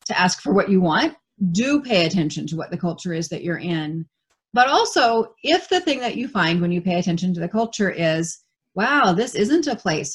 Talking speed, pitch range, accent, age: 225 wpm, 160-205 Hz, American, 30-49